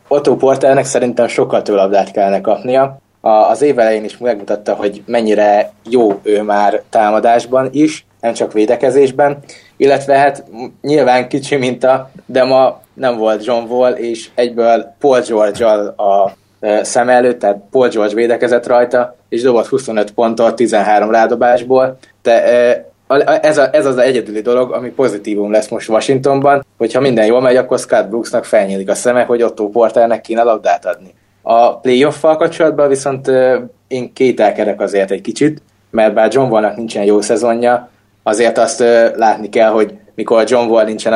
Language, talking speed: Hungarian, 155 wpm